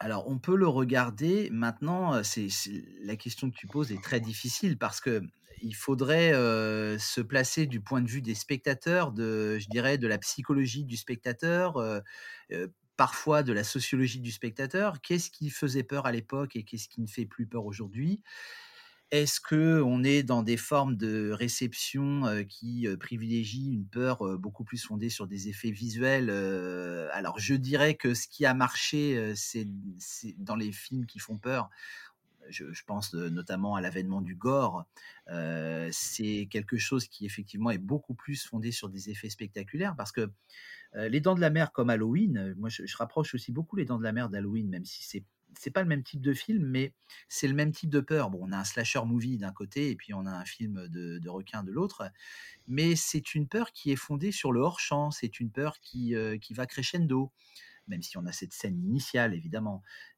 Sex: male